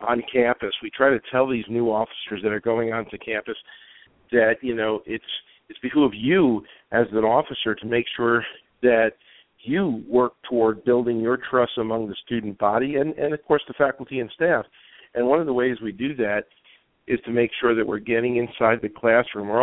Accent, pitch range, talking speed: American, 110-125 Hz, 200 wpm